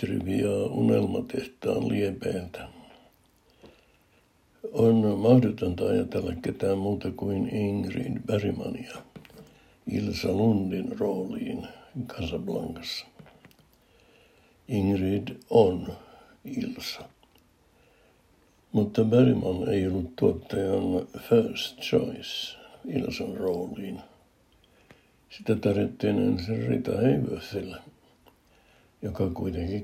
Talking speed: 70 wpm